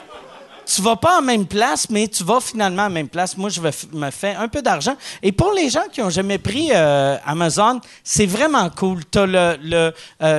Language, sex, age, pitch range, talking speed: French, male, 40-59, 160-220 Hz, 215 wpm